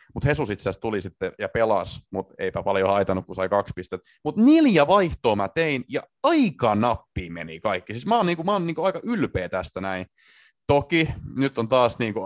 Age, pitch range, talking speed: 30-49, 95-140 Hz, 205 wpm